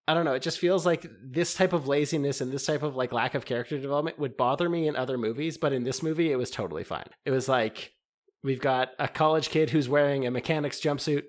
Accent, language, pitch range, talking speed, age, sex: American, English, 120-155 Hz, 250 wpm, 20-39, male